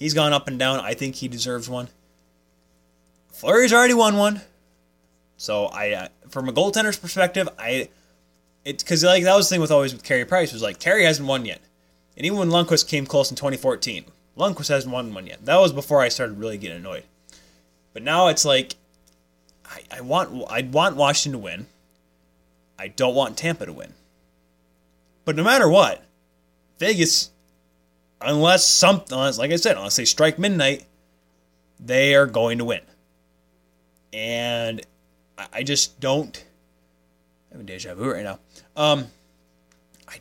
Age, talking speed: 20-39, 170 wpm